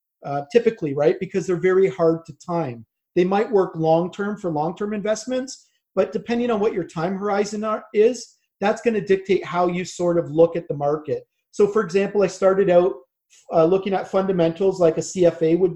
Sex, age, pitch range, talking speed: male, 40-59, 165-200 Hz, 190 wpm